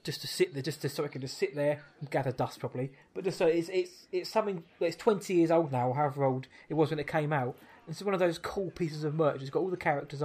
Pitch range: 140-170 Hz